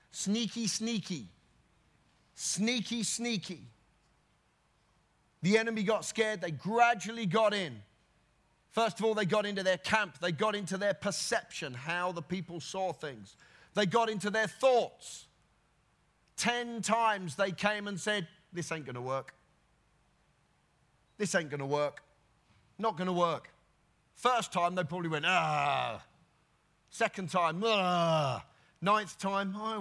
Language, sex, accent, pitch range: English, male, British, 155-210 Hz